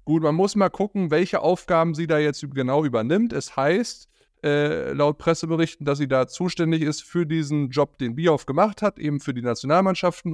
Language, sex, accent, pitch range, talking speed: German, male, German, 130-170 Hz, 190 wpm